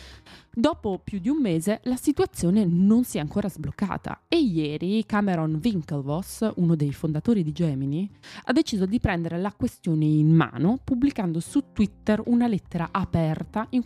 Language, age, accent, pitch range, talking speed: Italian, 20-39, native, 155-215 Hz, 155 wpm